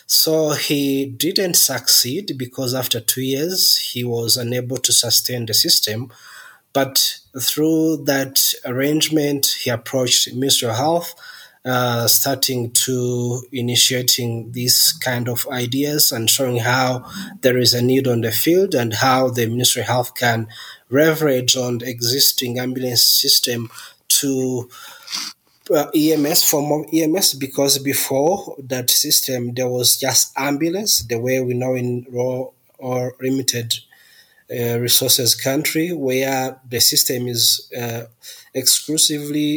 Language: English